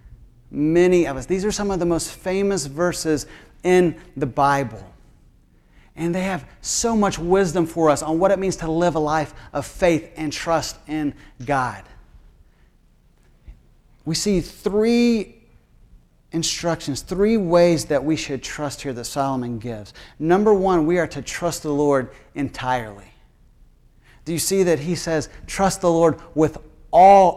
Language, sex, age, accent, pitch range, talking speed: English, male, 40-59, American, 130-170 Hz, 155 wpm